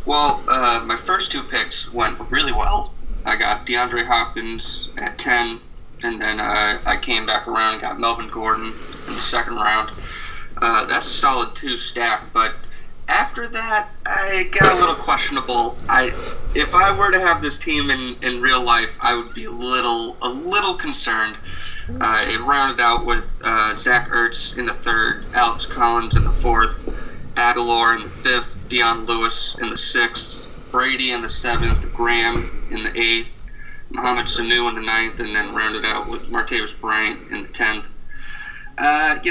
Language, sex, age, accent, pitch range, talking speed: English, male, 20-39, American, 115-170 Hz, 175 wpm